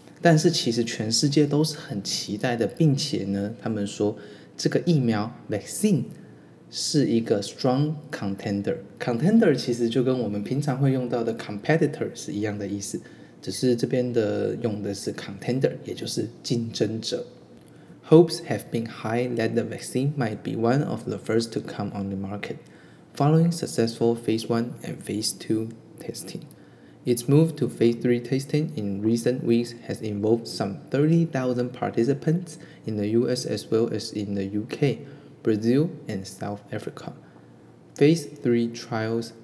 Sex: male